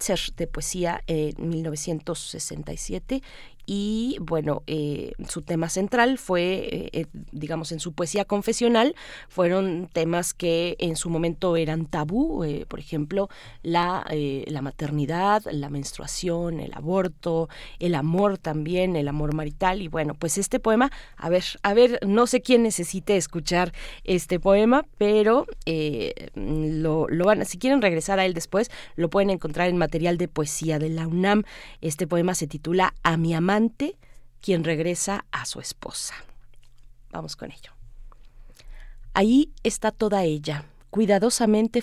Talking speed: 145 wpm